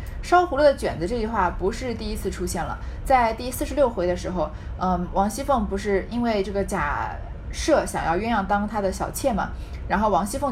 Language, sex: Chinese, female